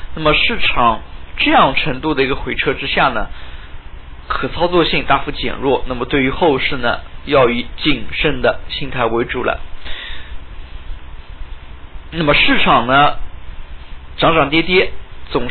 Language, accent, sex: Chinese, native, male